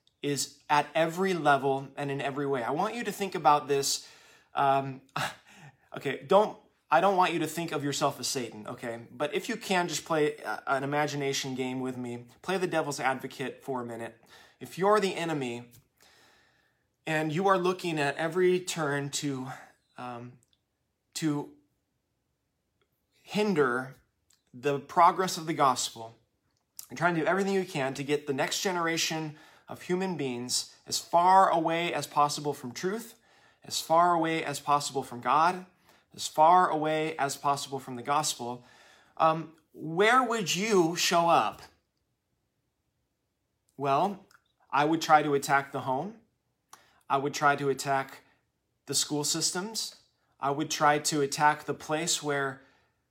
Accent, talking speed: American, 150 wpm